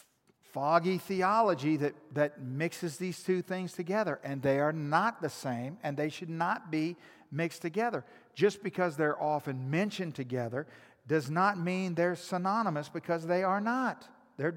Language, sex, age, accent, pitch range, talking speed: English, male, 50-69, American, 135-180 Hz, 155 wpm